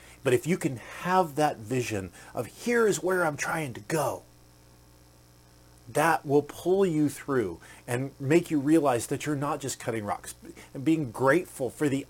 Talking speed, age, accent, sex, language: 175 wpm, 40-59, American, male, English